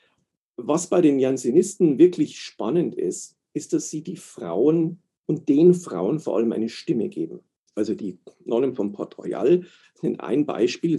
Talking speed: 160 wpm